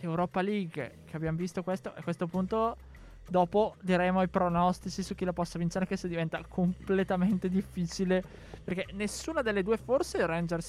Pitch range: 155-195 Hz